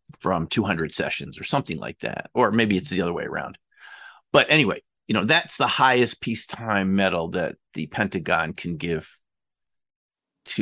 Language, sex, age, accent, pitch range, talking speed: English, male, 50-69, American, 95-135 Hz, 165 wpm